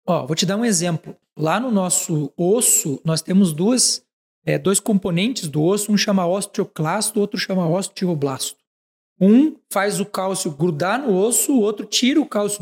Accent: Brazilian